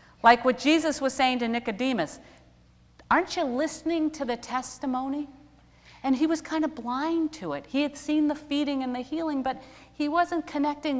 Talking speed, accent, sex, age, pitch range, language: 180 wpm, American, female, 50-69, 230-290 Hz, English